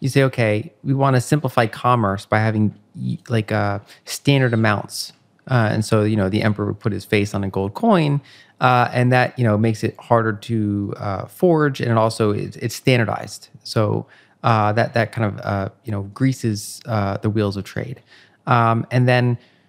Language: English